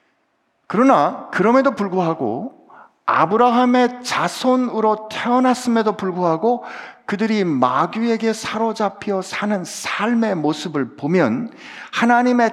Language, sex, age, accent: Korean, male, 50-69, native